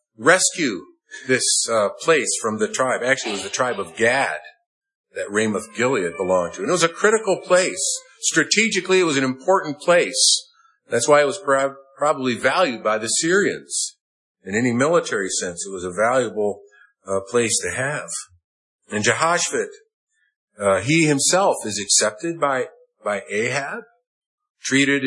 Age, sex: 50-69, male